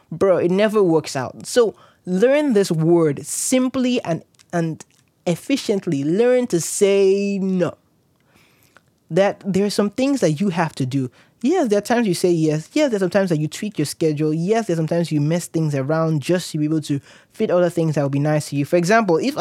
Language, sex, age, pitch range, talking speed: English, male, 20-39, 150-195 Hz, 220 wpm